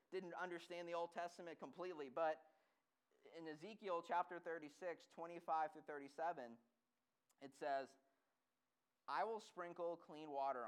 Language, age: English, 30-49